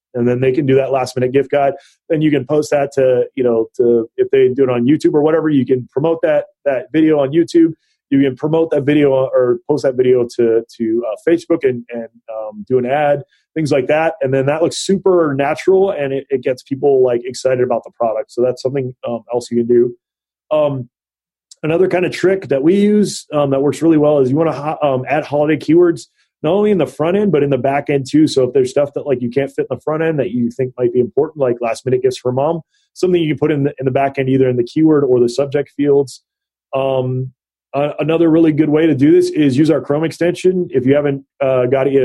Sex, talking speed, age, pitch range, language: male, 255 wpm, 30-49, 130-160 Hz, English